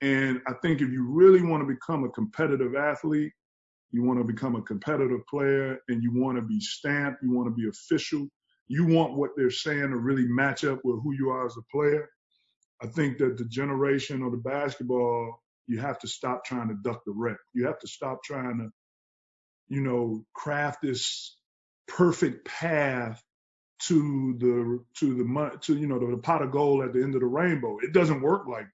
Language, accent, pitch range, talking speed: English, American, 125-150 Hz, 200 wpm